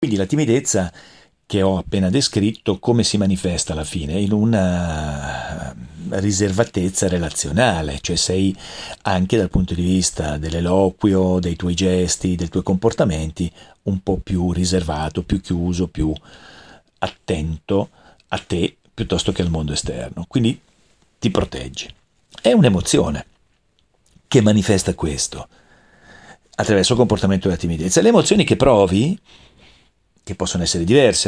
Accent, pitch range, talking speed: native, 90-125 Hz, 125 wpm